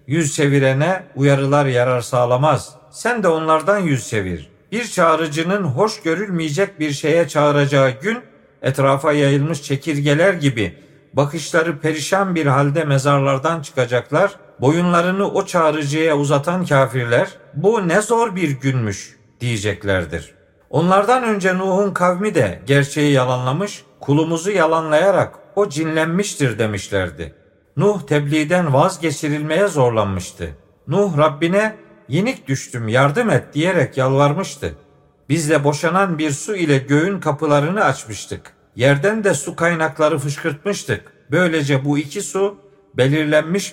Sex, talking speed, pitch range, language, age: male, 115 wpm, 140-180 Hz, Turkish, 50-69